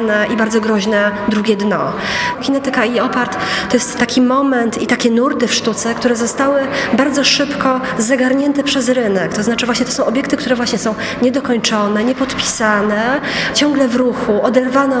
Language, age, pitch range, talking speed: Polish, 20-39, 230-265 Hz, 155 wpm